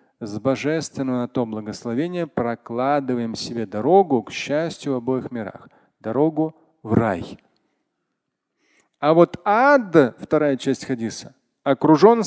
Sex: male